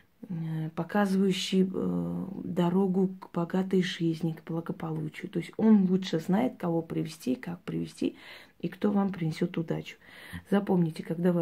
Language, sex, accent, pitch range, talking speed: Russian, female, native, 165-190 Hz, 130 wpm